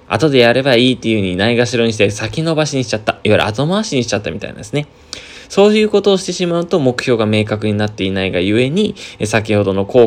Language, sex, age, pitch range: Japanese, male, 20-39, 105-145 Hz